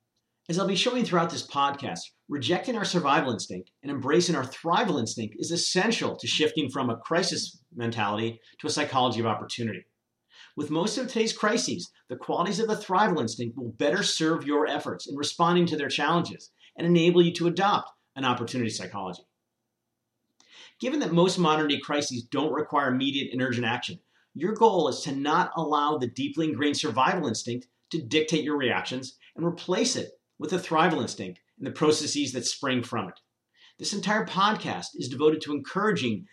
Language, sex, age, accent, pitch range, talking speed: English, male, 40-59, American, 125-170 Hz, 175 wpm